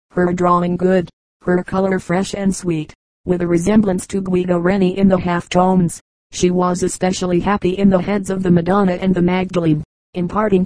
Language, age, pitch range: English, 40-59, 175-195 Hz